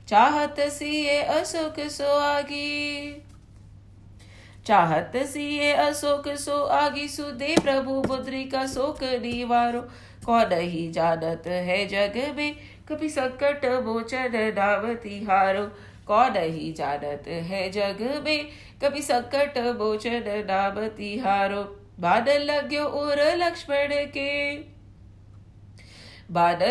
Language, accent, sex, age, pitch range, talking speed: English, Indian, female, 30-49, 195-285 Hz, 90 wpm